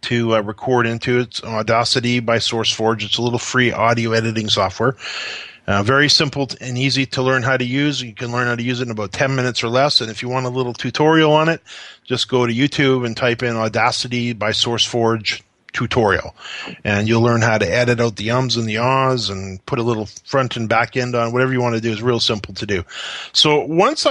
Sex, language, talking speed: male, English, 225 wpm